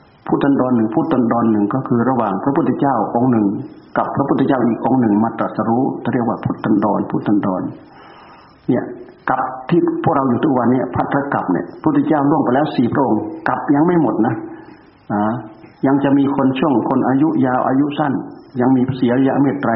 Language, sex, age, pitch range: Thai, male, 60-79, 115-135 Hz